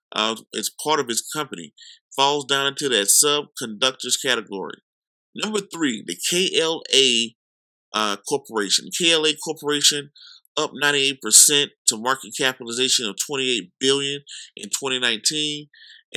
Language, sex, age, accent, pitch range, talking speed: English, male, 20-39, American, 105-140 Hz, 110 wpm